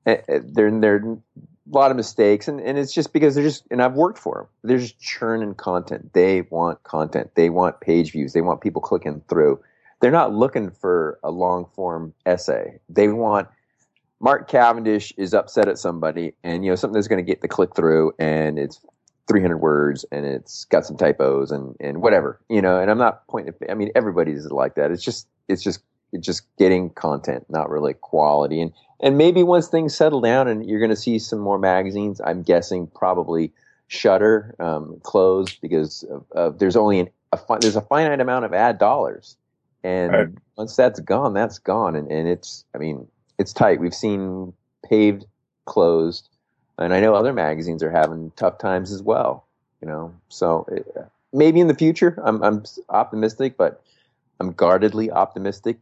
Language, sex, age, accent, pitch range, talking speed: English, male, 30-49, American, 85-115 Hz, 190 wpm